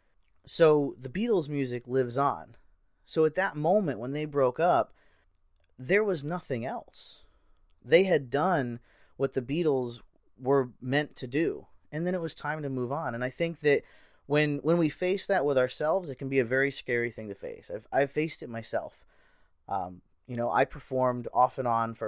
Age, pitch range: 30-49, 120-150 Hz